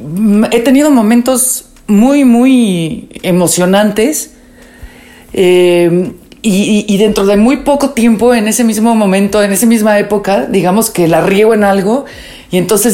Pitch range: 180-220 Hz